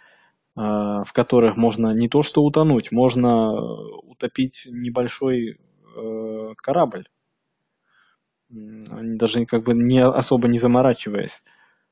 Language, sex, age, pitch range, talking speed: Russian, male, 20-39, 110-125 Hz, 90 wpm